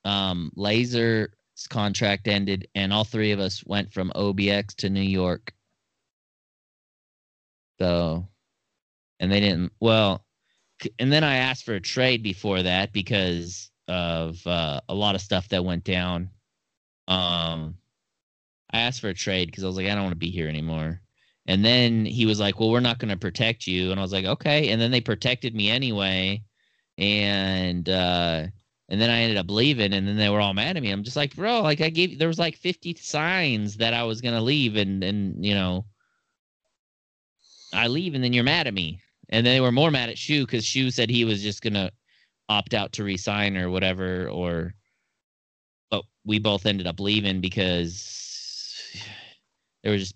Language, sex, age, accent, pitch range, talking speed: English, male, 20-39, American, 95-115 Hz, 190 wpm